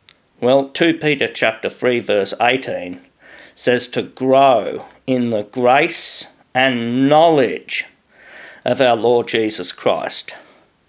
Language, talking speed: English, 110 wpm